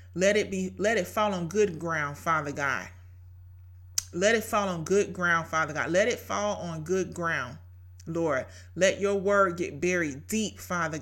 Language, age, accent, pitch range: English, 30-49, American, 145-205 Hz